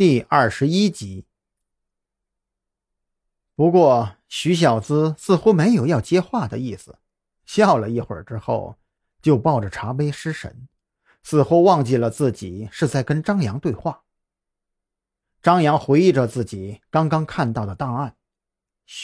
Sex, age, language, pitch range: male, 50-69, Chinese, 105-160 Hz